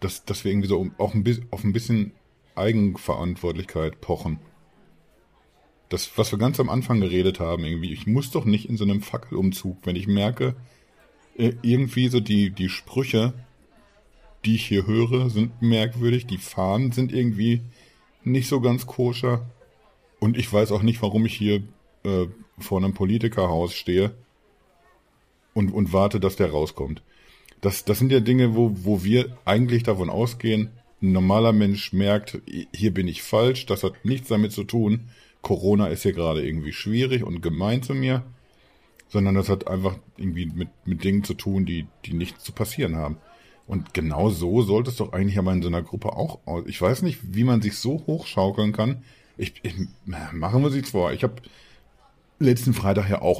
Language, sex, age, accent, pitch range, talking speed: German, male, 50-69, German, 95-120 Hz, 180 wpm